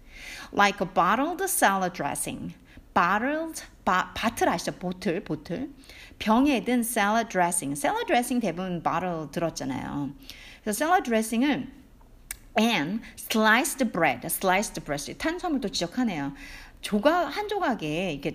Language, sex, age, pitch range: Korean, female, 50-69, 180-280 Hz